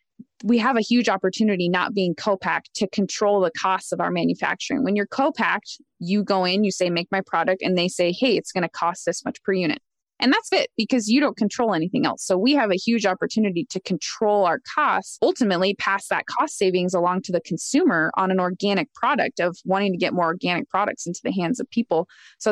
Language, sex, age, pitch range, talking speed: English, female, 20-39, 185-230 Hz, 220 wpm